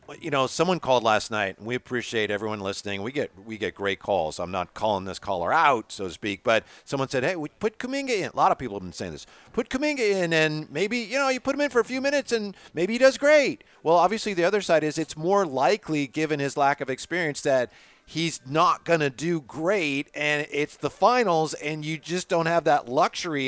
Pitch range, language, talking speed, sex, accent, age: 135-180 Hz, English, 240 wpm, male, American, 50-69